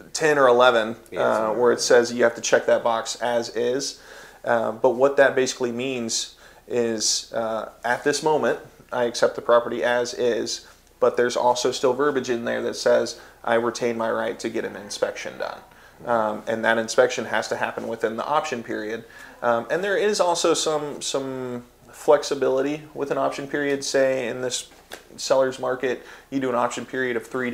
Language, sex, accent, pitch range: English, male, American, 115-130 Hz